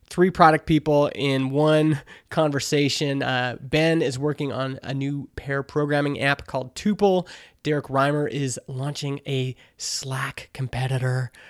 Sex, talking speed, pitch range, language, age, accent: male, 130 wpm, 135-155 Hz, English, 20-39, American